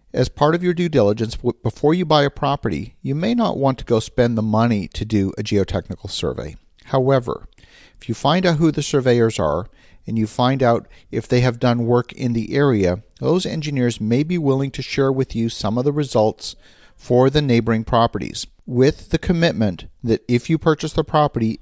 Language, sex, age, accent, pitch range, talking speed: English, male, 50-69, American, 110-135 Hz, 200 wpm